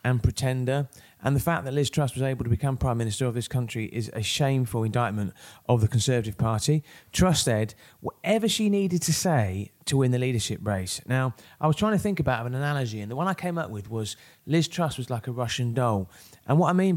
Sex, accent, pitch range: male, British, 115-145 Hz